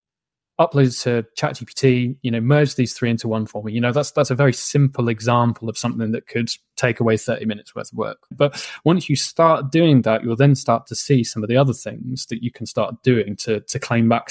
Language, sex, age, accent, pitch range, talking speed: English, male, 20-39, British, 110-135 Hz, 235 wpm